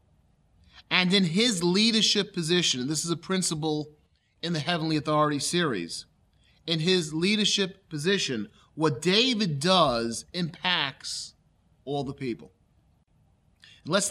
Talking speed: 115 wpm